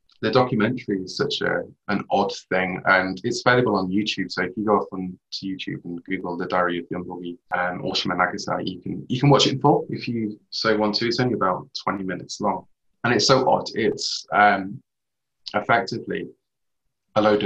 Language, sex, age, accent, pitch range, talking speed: English, male, 20-39, British, 90-110 Hz, 205 wpm